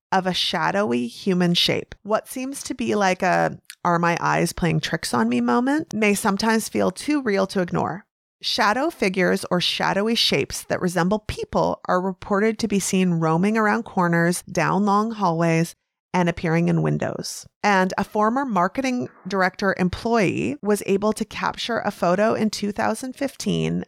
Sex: female